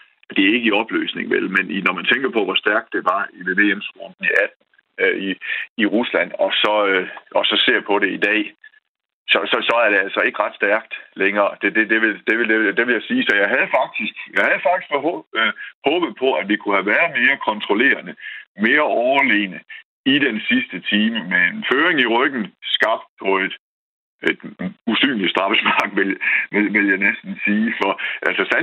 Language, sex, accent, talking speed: Danish, male, native, 185 wpm